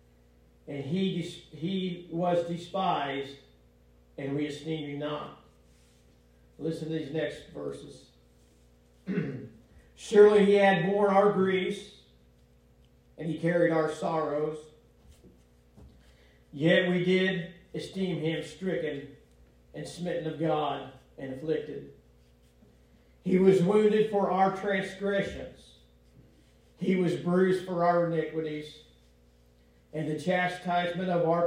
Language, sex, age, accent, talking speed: English, male, 50-69, American, 105 wpm